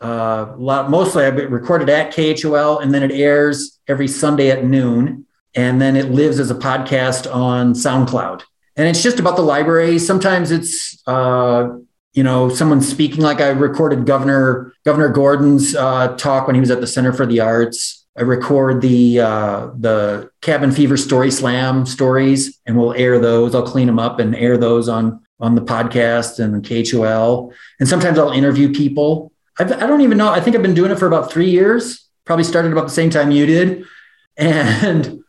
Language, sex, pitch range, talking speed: English, male, 125-160 Hz, 190 wpm